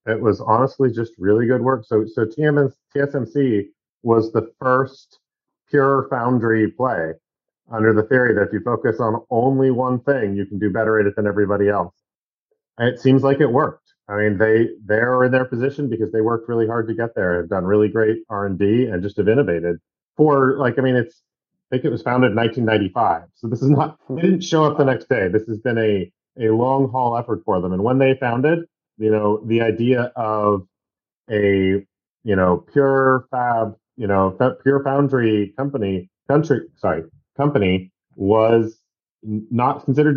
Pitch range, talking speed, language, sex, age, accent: 105-135 Hz, 190 wpm, English, male, 40-59, American